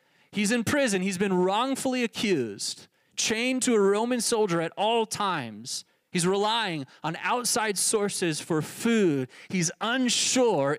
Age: 30-49